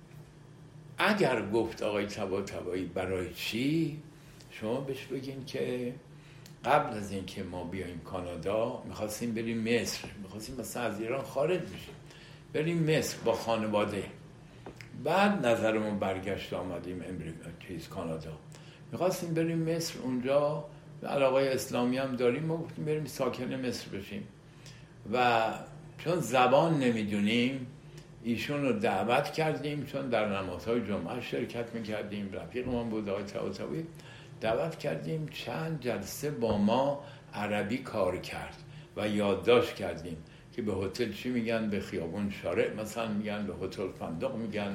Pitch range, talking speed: 105-155 Hz, 125 wpm